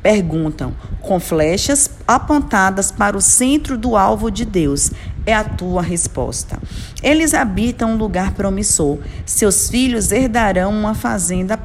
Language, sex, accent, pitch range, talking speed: Portuguese, female, Brazilian, 165-225 Hz, 130 wpm